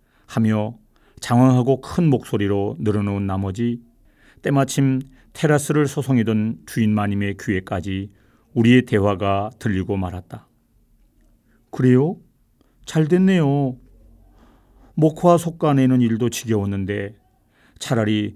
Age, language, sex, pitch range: 40-59, Korean, male, 105-130 Hz